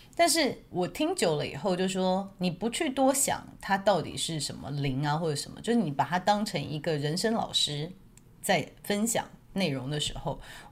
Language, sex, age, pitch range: Chinese, female, 30-49, 150-210 Hz